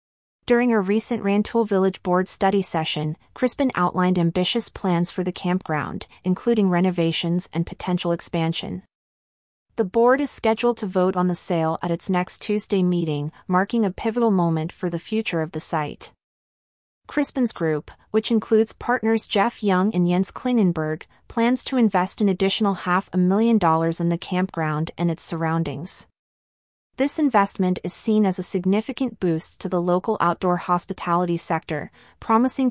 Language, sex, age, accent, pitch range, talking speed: English, female, 30-49, American, 170-220 Hz, 155 wpm